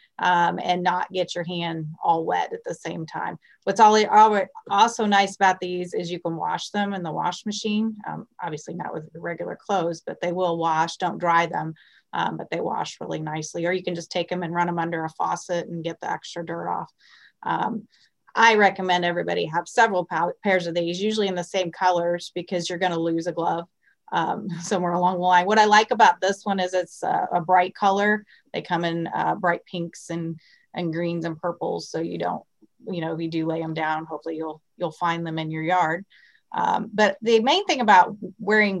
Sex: female